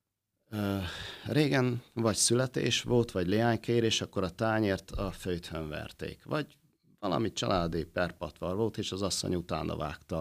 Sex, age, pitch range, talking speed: male, 50-69, 90-115 Hz, 135 wpm